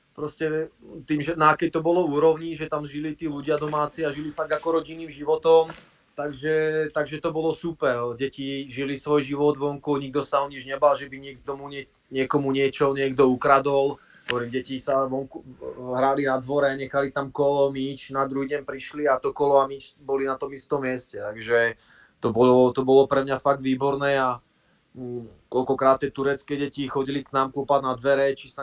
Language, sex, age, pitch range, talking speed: Czech, male, 30-49, 135-155 Hz, 170 wpm